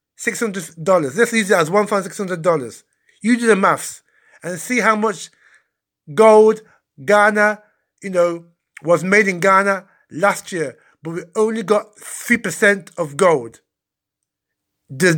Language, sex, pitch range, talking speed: English, male, 190-230 Hz, 125 wpm